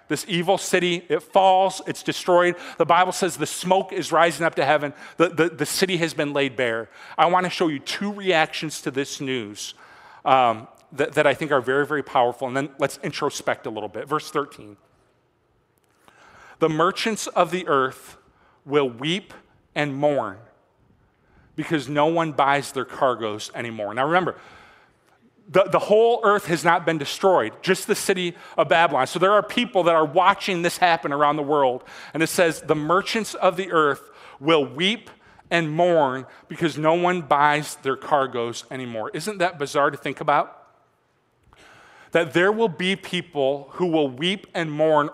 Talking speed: 175 wpm